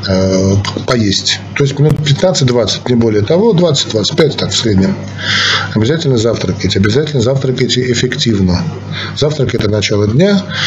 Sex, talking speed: male, 125 wpm